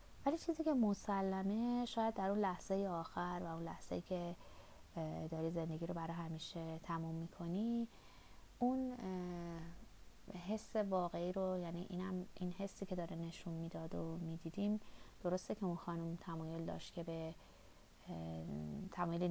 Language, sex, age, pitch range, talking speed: Persian, female, 30-49, 165-195 Hz, 125 wpm